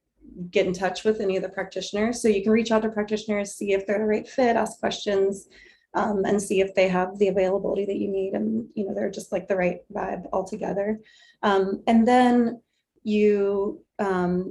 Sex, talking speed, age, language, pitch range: female, 205 wpm, 30-49, English, 190-210 Hz